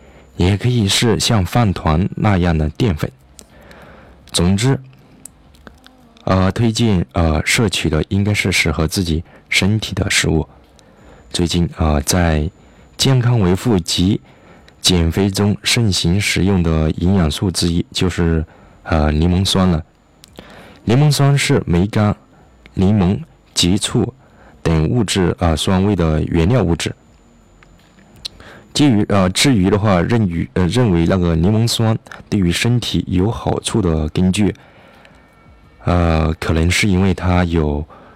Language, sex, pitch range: Chinese, male, 80-100 Hz